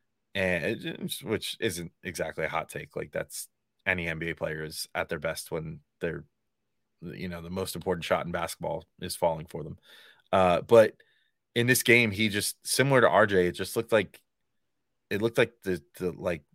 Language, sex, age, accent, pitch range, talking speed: English, male, 30-49, American, 90-100 Hz, 180 wpm